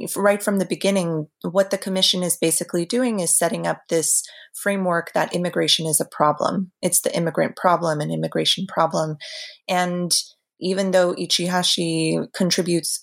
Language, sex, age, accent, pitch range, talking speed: English, female, 30-49, American, 155-185 Hz, 145 wpm